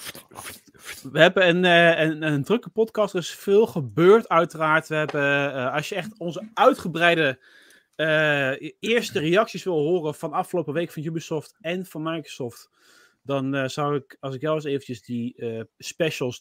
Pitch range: 135-175 Hz